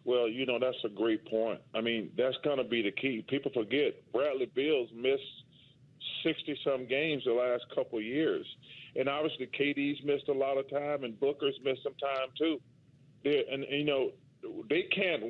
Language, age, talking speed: English, 40-59, 180 wpm